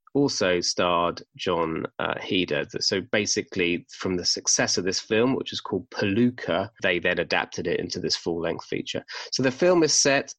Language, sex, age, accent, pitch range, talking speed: English, male, 30-49, British, 100-120 Hz, 175 wpm